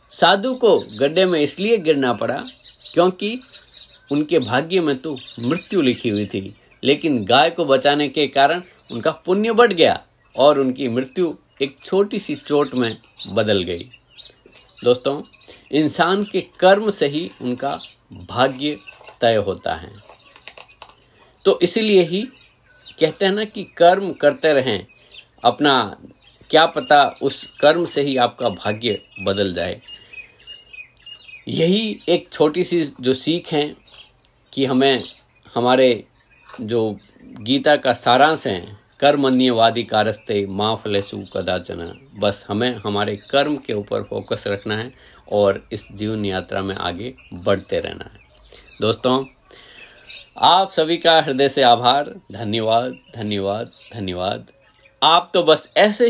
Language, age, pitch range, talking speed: Hindi, 50-69, 110-170 Hz, 125 wpm